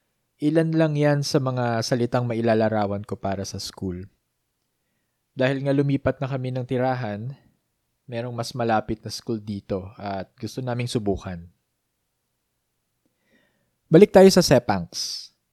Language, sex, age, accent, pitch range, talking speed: English, male, 20-39, Filipino, 115-145 Hz, 125 wpm